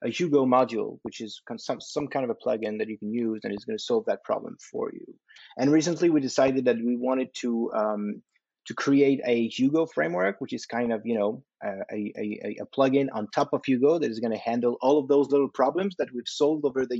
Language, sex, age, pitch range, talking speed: English, male, 30-49, 120-150 Hz, 245 wpm